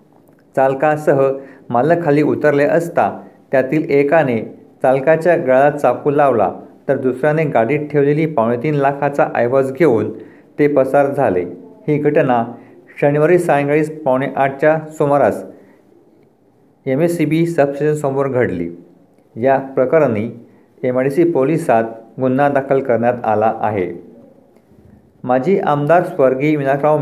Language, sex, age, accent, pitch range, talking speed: Marathi, male, 50-69, native, 125-150 Hz, 105 wpm